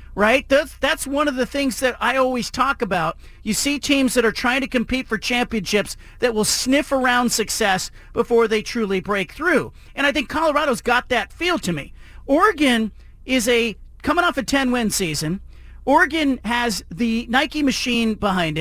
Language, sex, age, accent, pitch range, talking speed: English, male, 40-59, American, 220-265 Hz, 175 wpm